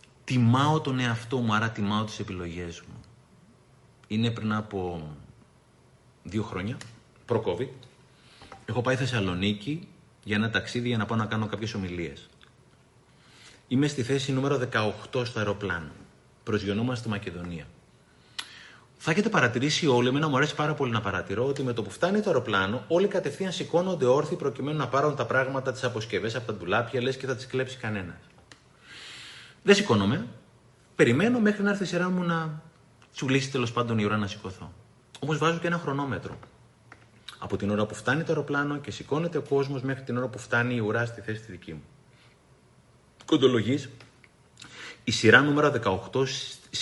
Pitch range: 105-140 Hz